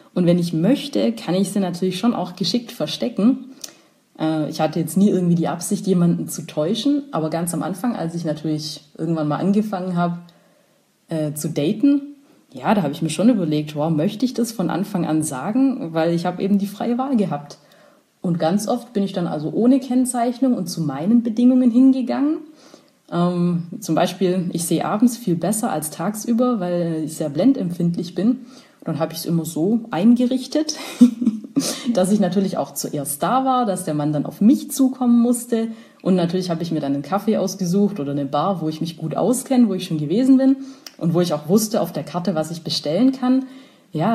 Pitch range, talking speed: 165-240 Hz, 195 wpm